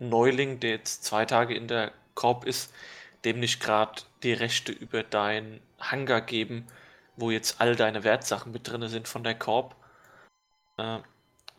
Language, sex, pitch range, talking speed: German, male, 110-125 Hz, 155 wpm